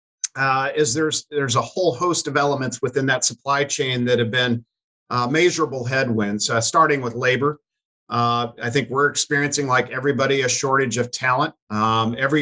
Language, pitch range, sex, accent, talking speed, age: English, 120-145 Hz, male, American, 175 wpm, 50-69